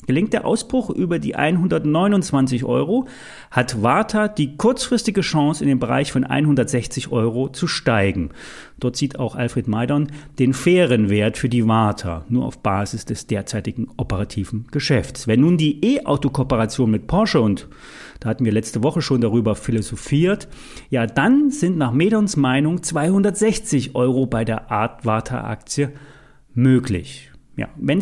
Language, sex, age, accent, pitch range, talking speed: German, male, 30-49, German, 115-170 Hz, 145 wpm